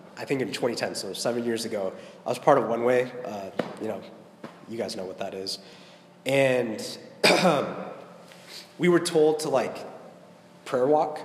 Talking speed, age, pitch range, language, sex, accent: 165 wpm, 20-39, 115-155 Hz, English, male, American